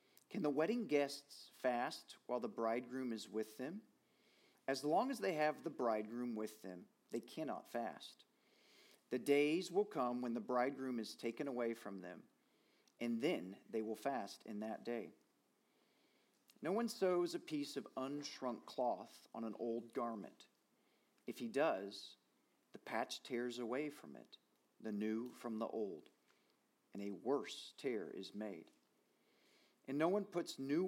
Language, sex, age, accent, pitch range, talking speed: English, male, 40-59, American, 110-140 Hz, 155 wpm